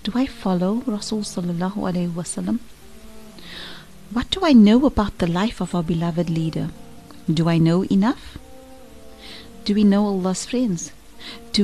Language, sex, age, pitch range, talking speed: English, female, 40-59, 165-205 Hz, 140 wpm